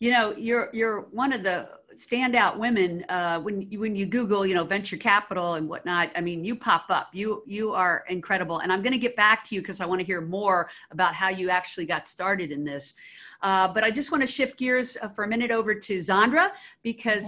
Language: English